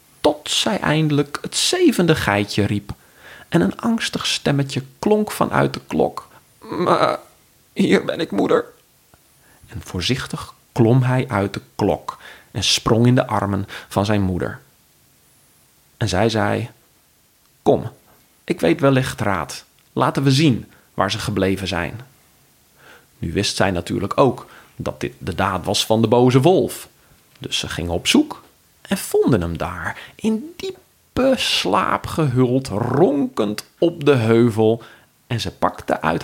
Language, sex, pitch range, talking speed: Dutch, male, 105-170 Hz, 140 wpm